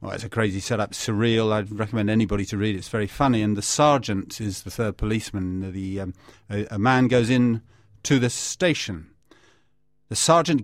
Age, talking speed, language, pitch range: 50-69, 190 wpm, English, 110-140 Hz